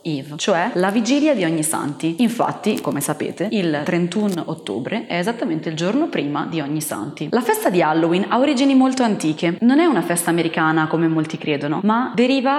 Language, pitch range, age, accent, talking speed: Italian, 165-235 Hz, 20-39, native, 185 wpm